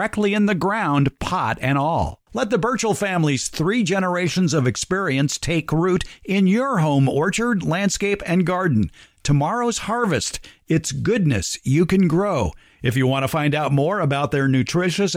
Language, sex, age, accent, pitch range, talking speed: English, male, 50-69, American, 125-180 Hz, 160 wpm